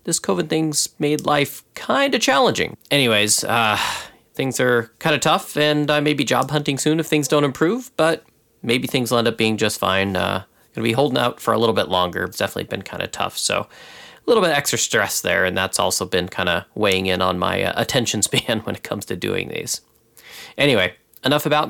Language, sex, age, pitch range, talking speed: English, male, 30-49, 100-150 Hz, 225 wpm